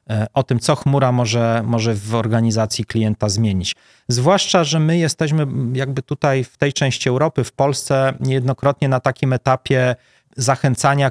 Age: 30-49